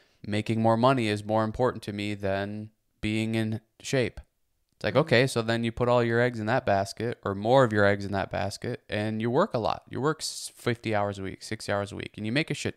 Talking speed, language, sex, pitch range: 250 wpm, English, male, 105-120 Hz